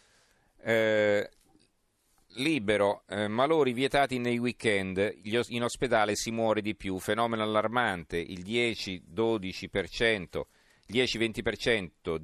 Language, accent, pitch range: Italian, native, 95-115 Hz